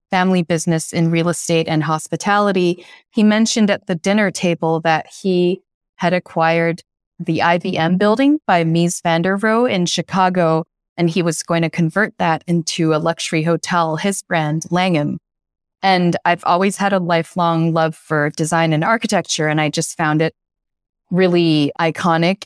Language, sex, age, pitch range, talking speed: English, female, 30-49, 165-195 Hz, 160 wpm